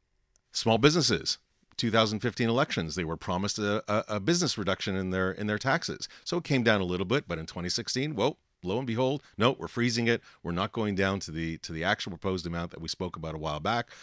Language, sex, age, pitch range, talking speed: English, male, 40-59, 85-110 Hz, 225 wpm